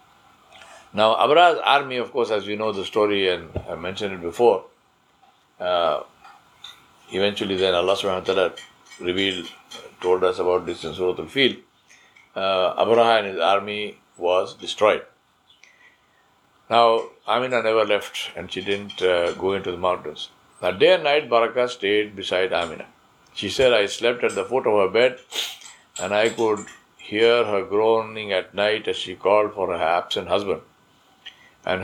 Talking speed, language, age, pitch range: 155 wpm, English, 60-79, 100-125 Hz